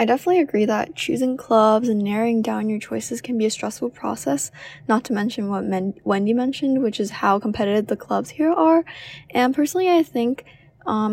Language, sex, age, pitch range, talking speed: English, female, 10-29, 200-245 Hz, 190 wpm